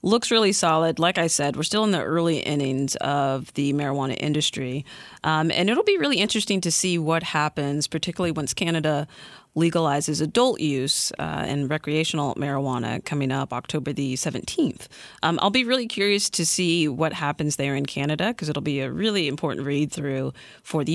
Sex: female